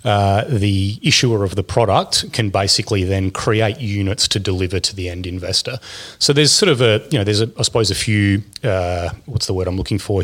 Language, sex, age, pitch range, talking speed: English, male, 30-49, 95-110 Hz, 215 wpm